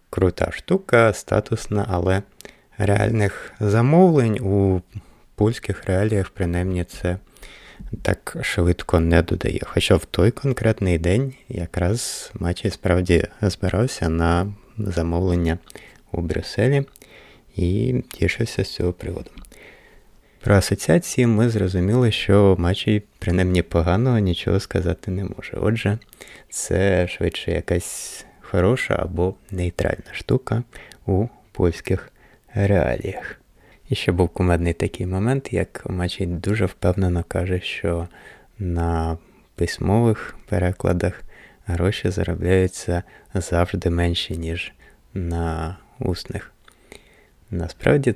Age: 20-39